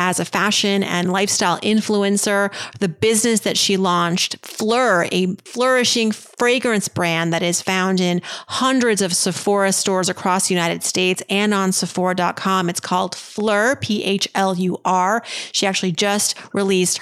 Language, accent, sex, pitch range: English, American, female, 180-210 Hz